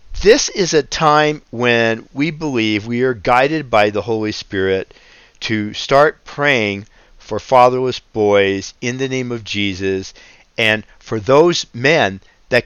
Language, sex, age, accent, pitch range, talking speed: English, male, 50-69, American, 105-140 Hz, 140 wpm